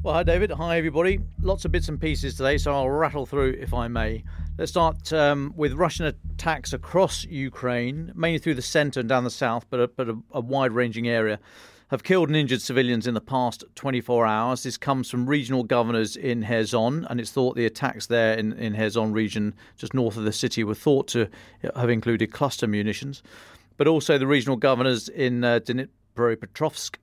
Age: 40-59